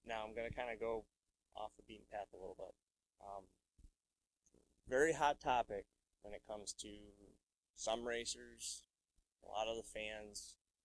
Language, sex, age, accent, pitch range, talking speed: English, male, 20-39, American, 95-110 Hz, 160 wpm